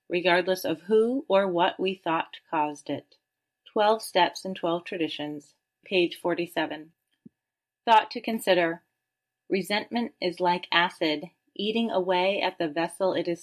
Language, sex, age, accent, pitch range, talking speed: English, female, 30-49, American, 165-200 Hz, 135 wpm